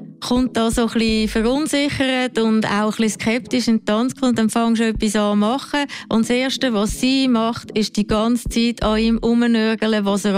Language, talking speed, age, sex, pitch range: German, 190 wpm, 30-49, female, 205-245 Hz